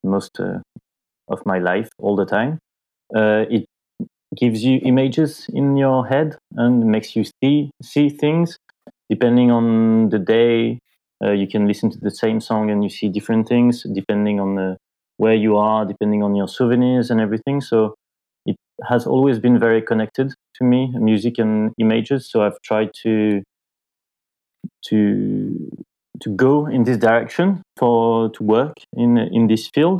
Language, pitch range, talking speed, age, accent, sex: English, 110-125 Hz, 160 wpm, 30-49, French, male